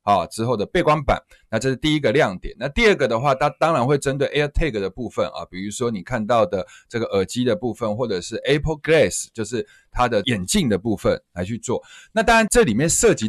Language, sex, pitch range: Chinese, male, 110-180 Hz